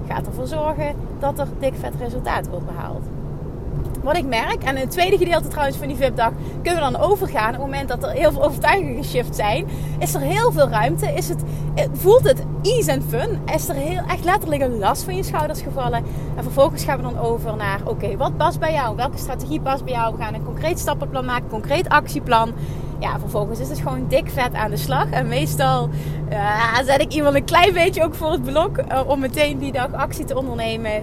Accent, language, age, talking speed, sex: Dutch, Dutch, 30-49, 225 wpm, female